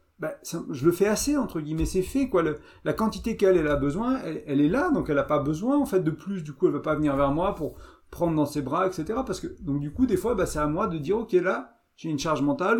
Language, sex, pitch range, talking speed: French, male, 145-190 Hz, 300 wpm